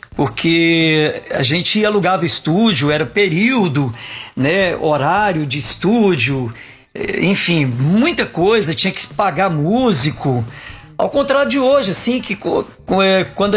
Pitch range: 150-205 Hz